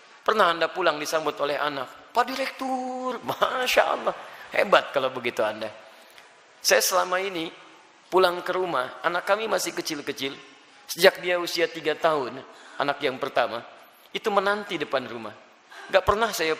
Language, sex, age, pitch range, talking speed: Indonesian, male, 30-49, 155-220 Hz, 140 wpm